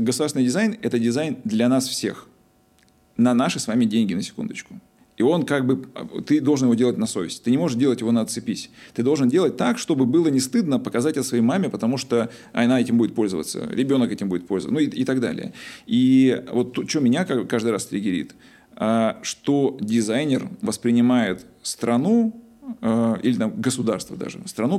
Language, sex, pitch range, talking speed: Russian, male, 115-195 Hz, 180 wpm